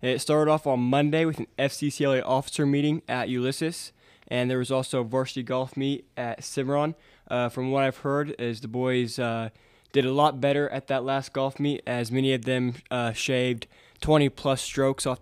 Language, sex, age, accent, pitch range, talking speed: English, male, 20-39, American, 125-135 Hz, 195 wpm